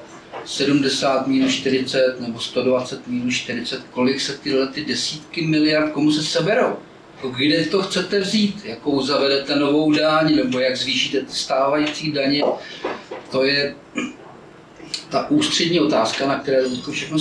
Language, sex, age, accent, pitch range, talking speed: Czech, male, 40-59, native, 135-180 Hz, 135 wpm